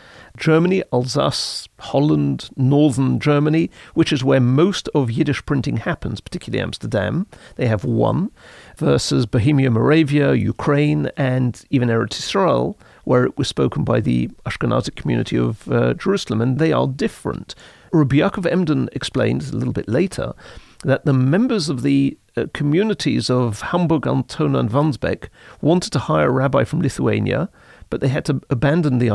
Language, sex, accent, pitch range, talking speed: English, male, British, 125-165 Hz, 150 wpm